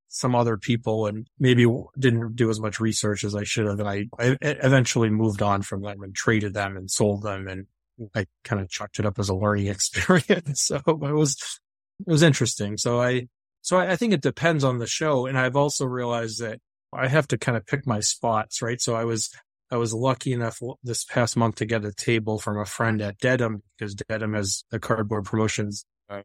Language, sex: English, male